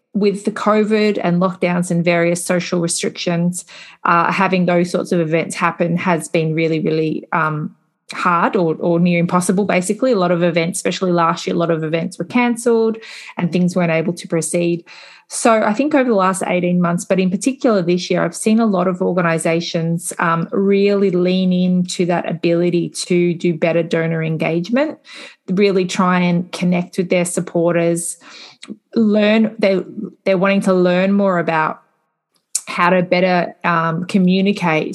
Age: 20-39